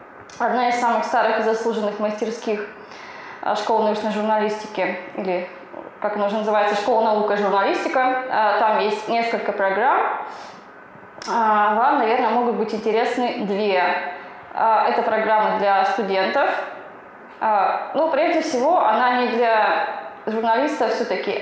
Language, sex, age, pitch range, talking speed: Russian, female, 20-39, 205-235 Hz, 115 wpm